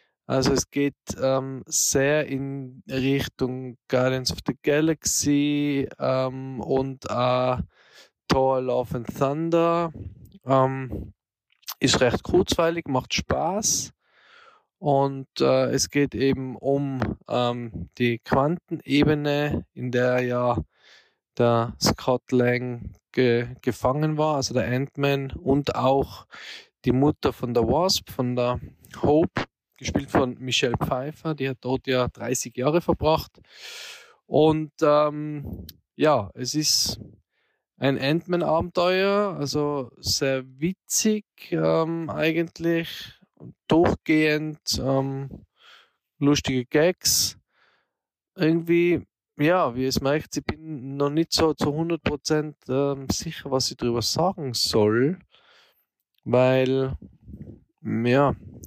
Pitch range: 125-155 Hz